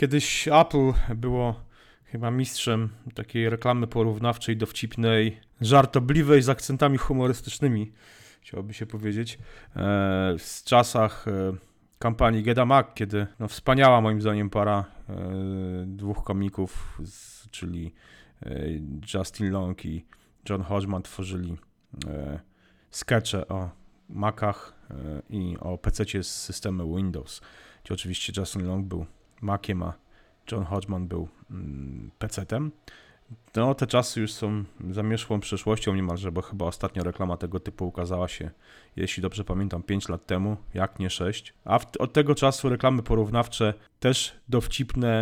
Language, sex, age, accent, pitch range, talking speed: Polish, male, 30-49, native, 95-115 Hz, 120 wpm